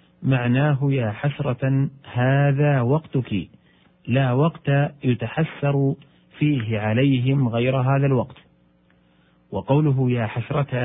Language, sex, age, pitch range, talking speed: Arabic, male, 40-59, 110-155 Hz, 90 wpm